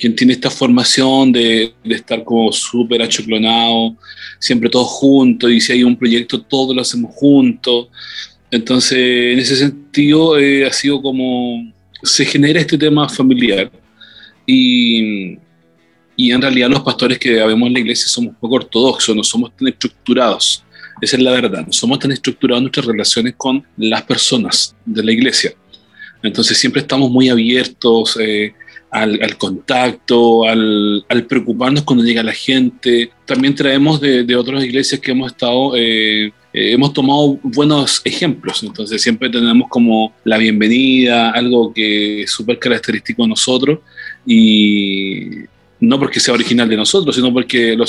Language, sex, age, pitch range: Spanish, male, 40-59, 115-135 Hz